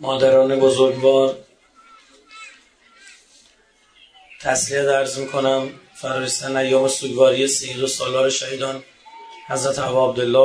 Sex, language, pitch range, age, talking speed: male, Persian, 135-155 Hz, 30-49, 85 wpm